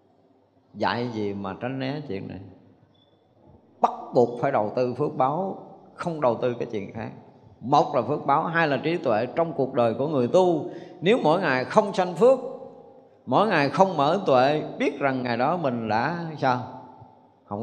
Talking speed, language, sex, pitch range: 180 wpm, Vietnamese, male, 115-145 Hz